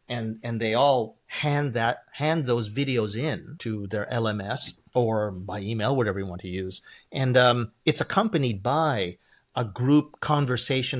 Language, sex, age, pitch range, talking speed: English, male, 40-59, 110-150 Hz, 160 wpm